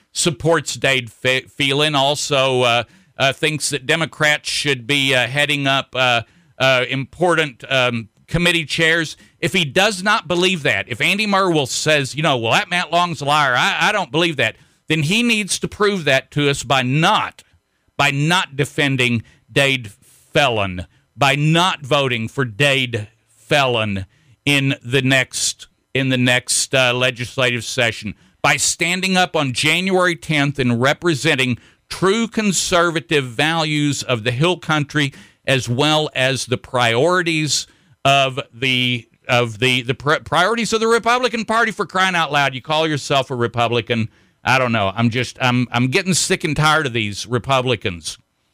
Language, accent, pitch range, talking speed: English, American, 125-170 Hz, 160 wpm